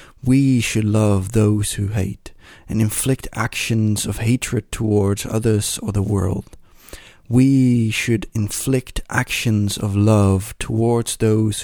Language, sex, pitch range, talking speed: English, male, 100-120 Hz, 125 wpm